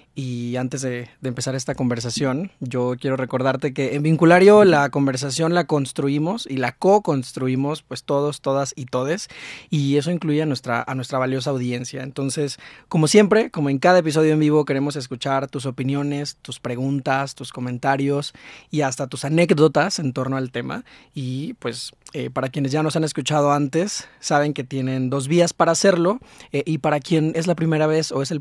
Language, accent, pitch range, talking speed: Spanish, Mexican, 130-155 Hz, 180 wpm